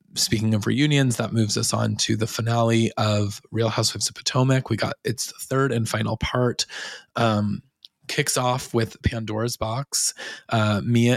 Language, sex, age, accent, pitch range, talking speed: English, male, 20-39, American, 110-125 Hz, 160 wpm